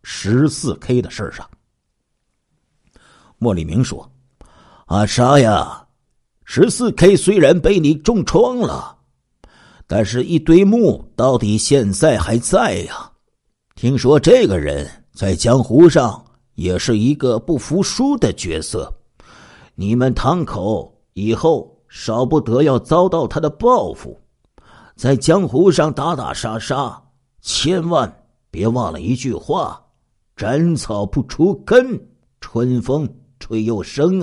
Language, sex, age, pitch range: Chinese, male, 50-69, 100-140 Hz